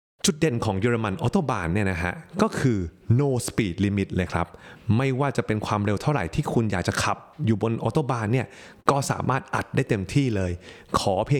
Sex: male